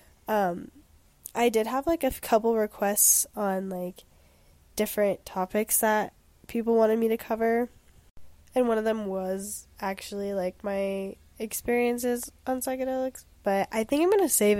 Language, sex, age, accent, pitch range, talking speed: English, female, 10-29, American, 185-225 Hz, 150 wpm